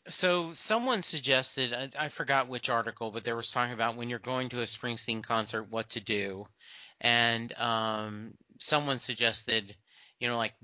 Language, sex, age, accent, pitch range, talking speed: English, male, 40-59, American, 115-135 Hz, 175 wpm